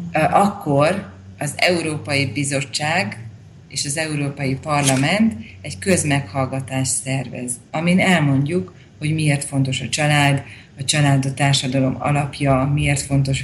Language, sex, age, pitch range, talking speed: Slovak, female, 30-49, 130-145 Hz, 110 wpm